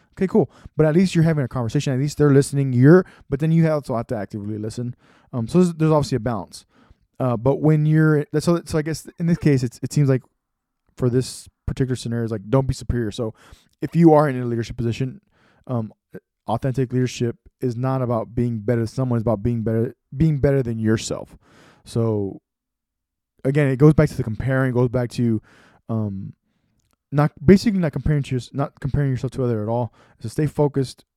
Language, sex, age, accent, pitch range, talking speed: English, male, 20-39, American, 115-150 Hz, 210 wpm